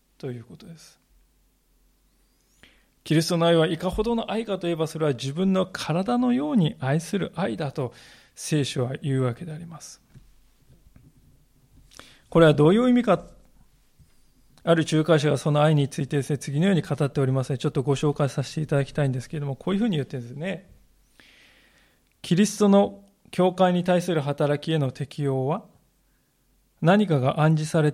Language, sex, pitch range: Japanese, male, 145-190 Hz